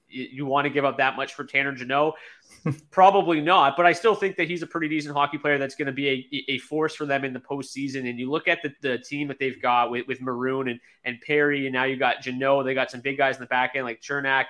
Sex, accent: male, American